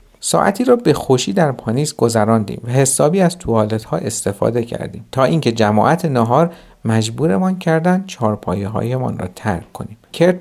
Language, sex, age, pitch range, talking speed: Persian, male, 50-69, 110-160 Hz, 145 wpm